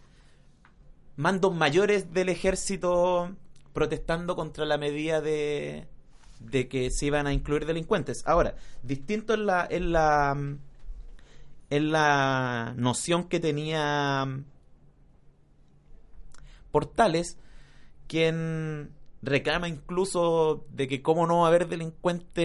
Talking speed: 105 wpm